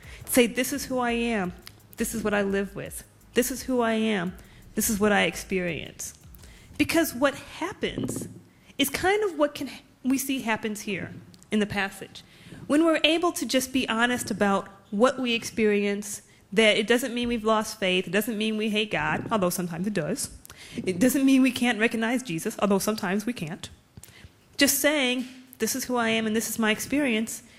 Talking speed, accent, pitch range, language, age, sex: 190 wpm, American, 210-265 Hz, English, 30-49, female